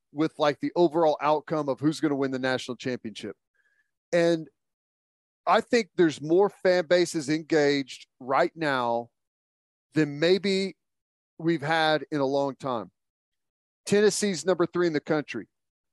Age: 40-59